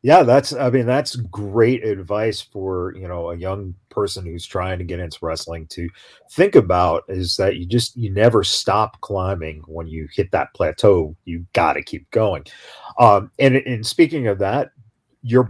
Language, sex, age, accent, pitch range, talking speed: English, male, 40-59, American, 100-135 Hz, 180 wpm